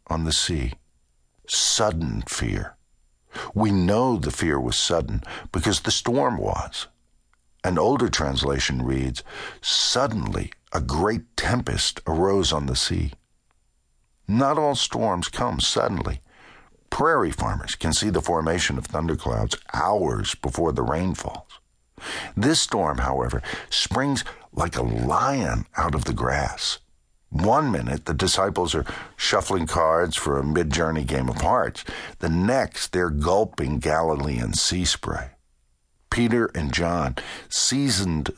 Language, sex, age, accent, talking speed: English, male, 60-79, American, 125 wpm